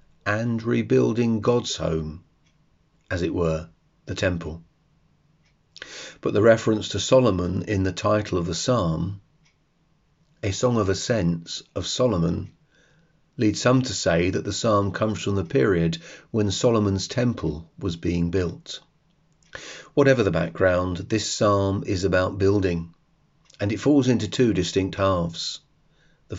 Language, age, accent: English, 40-59, British